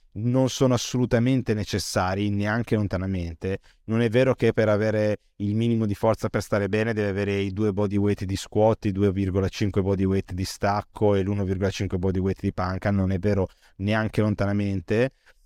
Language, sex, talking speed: Italian, male, 170 wpm